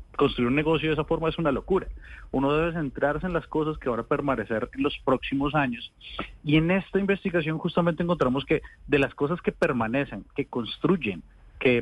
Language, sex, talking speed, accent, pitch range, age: Spanish, male, 195 wpm, Colombian, 130-165 Hz, 30-49